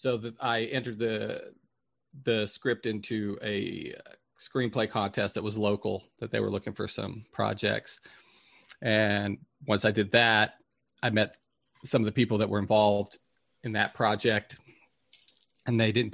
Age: 40-59